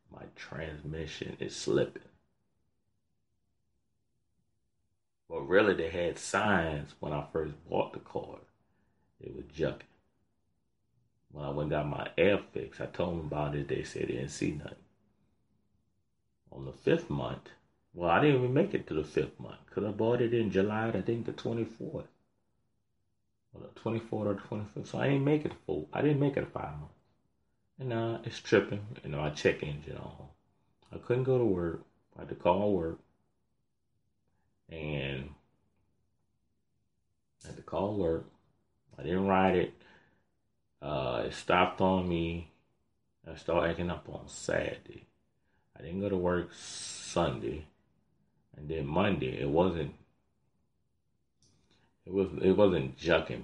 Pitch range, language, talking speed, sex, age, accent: 80-110 Hz, English, 155 wpm, male, 30-49, American